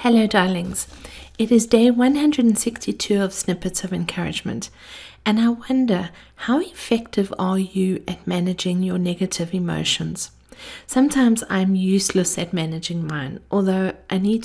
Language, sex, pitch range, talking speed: English, female, 180-220 Hz, 130 wpm